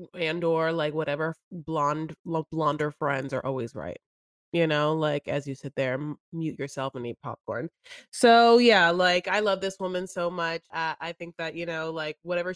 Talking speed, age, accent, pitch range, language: 190 wpm, 20-39, American, 155-195 Hz, English